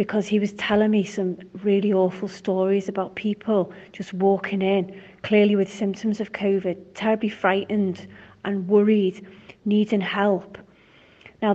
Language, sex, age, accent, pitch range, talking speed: English, female, 30-49, British, 190-210 Hz, 135 wpm